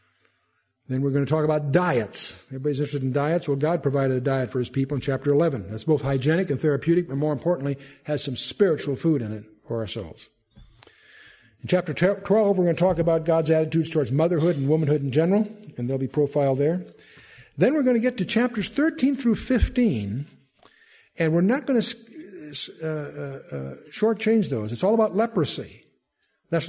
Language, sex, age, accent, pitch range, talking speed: English, male, 60-79, American, 135-195 Hz, 190 wpm